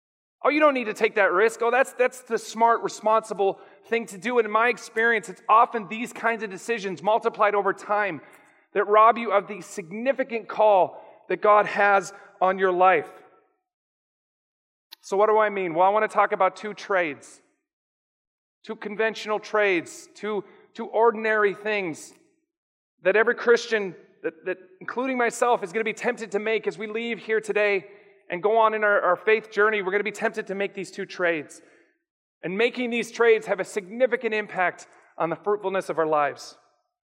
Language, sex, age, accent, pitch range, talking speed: English, male, 30-49, American, 200-235 Hz, 185 wpm